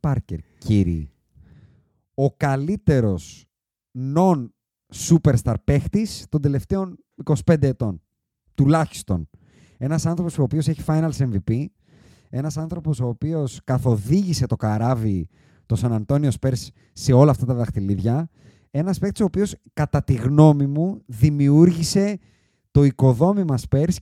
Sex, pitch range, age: male, 115-155 Hz, 30-49